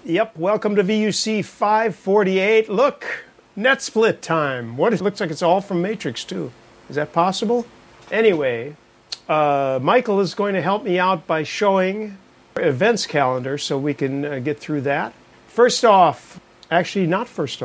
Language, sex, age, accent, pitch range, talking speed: English, male, 50-69, American, 150-200 Hz, 160 wpm